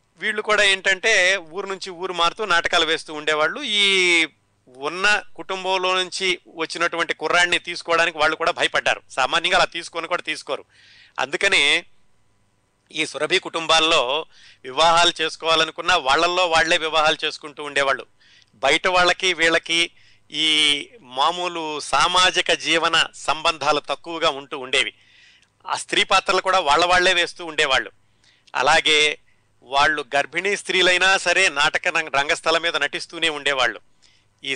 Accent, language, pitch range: native, Telugu, 140-175 Hz